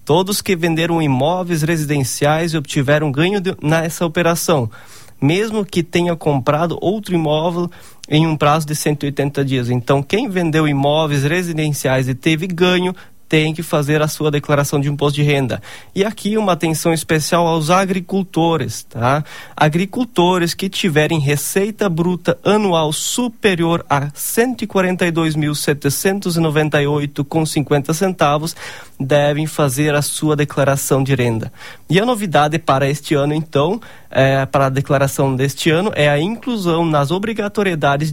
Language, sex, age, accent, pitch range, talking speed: Portuguese, male, 20-39, Brazilian, 145-175 Hz, 130 wpm